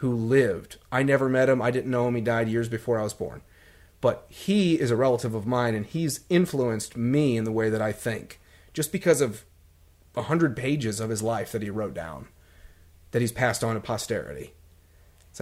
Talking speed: 210 wpm